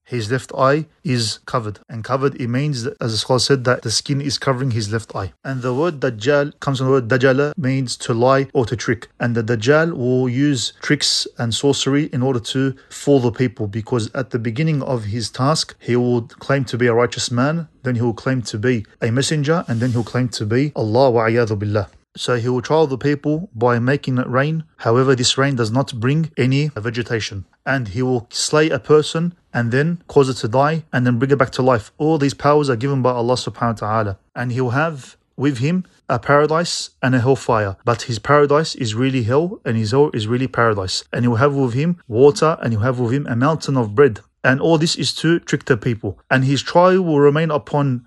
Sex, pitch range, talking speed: male, 120-145 Hz, 225 wpm